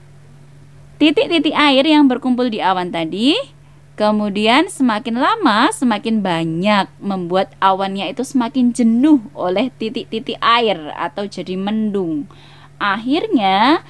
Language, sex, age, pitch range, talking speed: Malay, female, 20-39, 170-255 Hz, 105 wpm